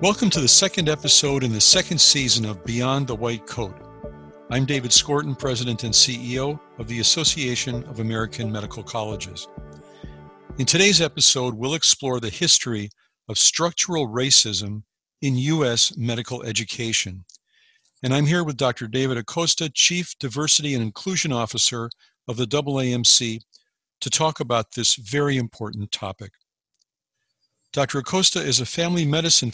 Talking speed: 140 wpm